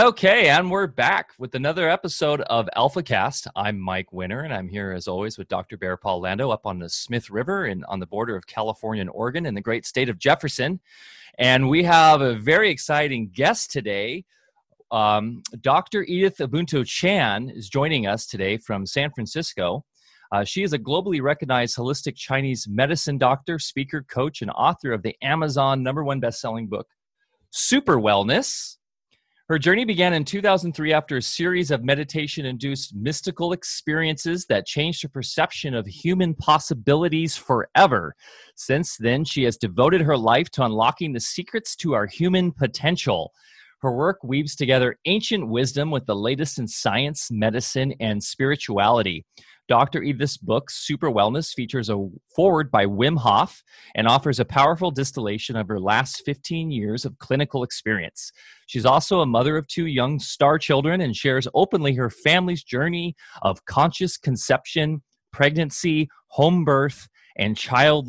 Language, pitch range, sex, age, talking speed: English, 115-160 Hz, male, 30-49, 160 wpm